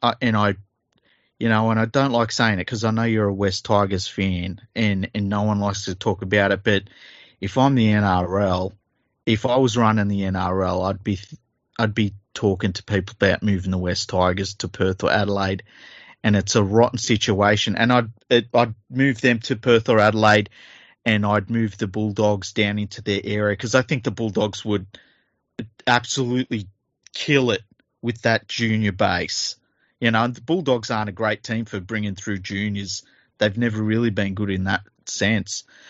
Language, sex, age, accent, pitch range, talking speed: English, male, 30-49, Australian, 100-115 Hz, 185 wpm